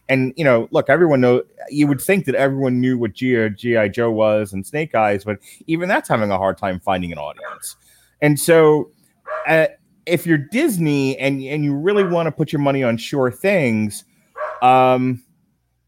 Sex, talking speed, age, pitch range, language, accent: male, 180 wpm, 30-49, 105-150 Hz, English, American